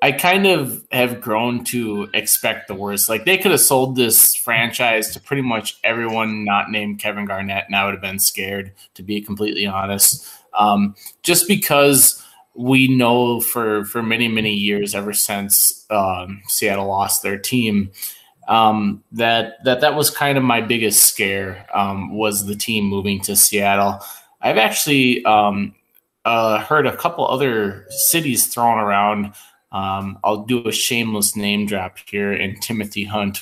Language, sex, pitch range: English, male, 100-125 Hz